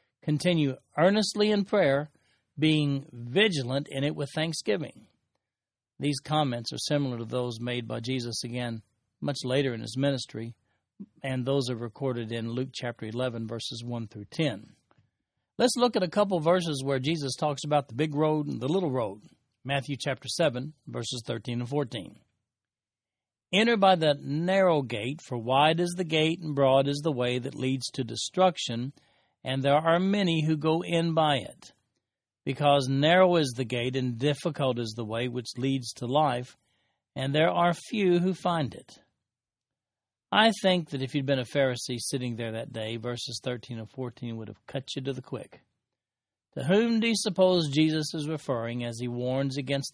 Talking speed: 175 wpm